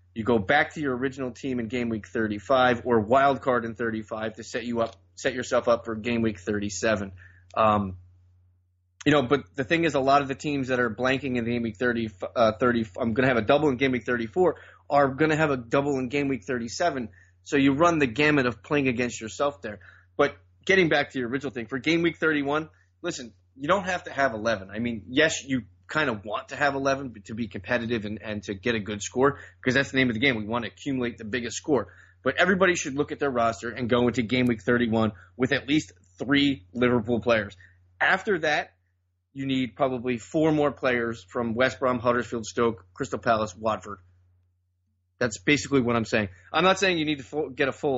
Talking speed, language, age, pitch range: 220 wpm, English, 20-39, 110-140 Hz